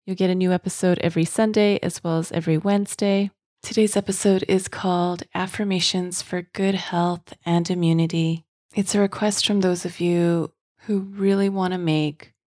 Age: 30-49